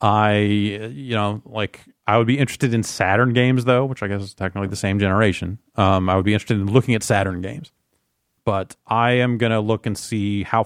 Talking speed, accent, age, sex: 220 wpm, American, 30-49, male